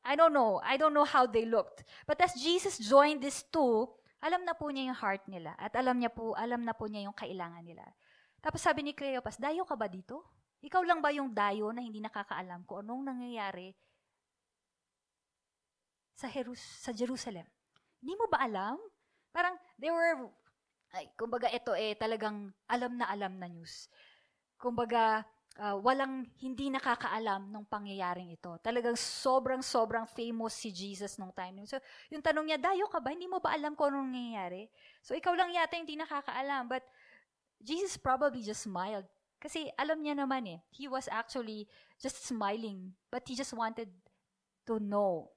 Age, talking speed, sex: 20-39, 170 wpm, female